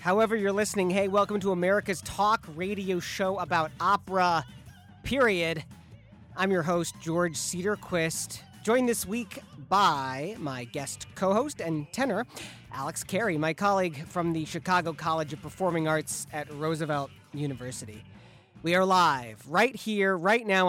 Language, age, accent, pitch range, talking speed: English, 40-59, American, 155-195 Hz, 140 wpm